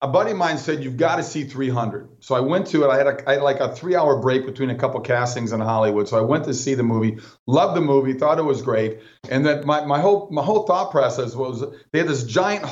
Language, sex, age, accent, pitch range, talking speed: English, male, 40-59, American, 125-150 Hz, 280 wpm